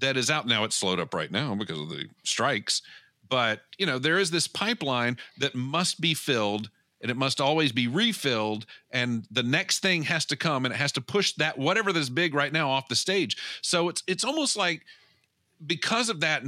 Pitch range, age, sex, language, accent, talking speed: 115-170 Hz, 50-69, male, English, American, 215 wpm